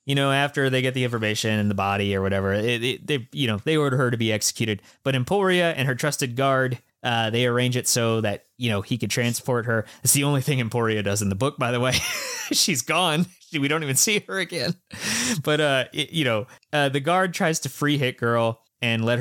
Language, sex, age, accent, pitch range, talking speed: English, male, 20-39, American, 110-140 Hz, 230 wpm